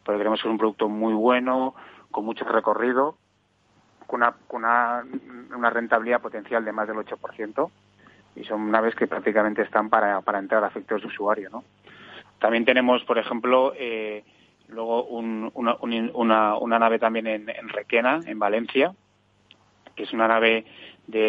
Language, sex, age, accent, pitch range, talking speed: Spanish, male, 30-49, Spanish, 110-115 Hz, 160 wpm